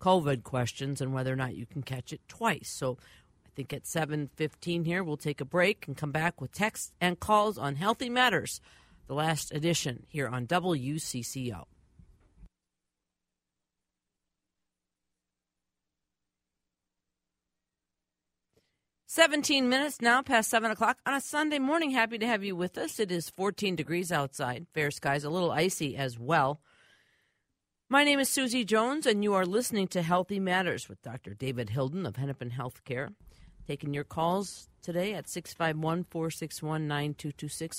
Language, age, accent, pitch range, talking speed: English, 50-69, American, 130-180 Hz, 150 wpm